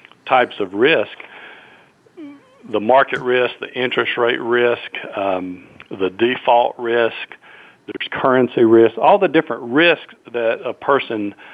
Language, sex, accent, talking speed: English, male, American, 125 wpm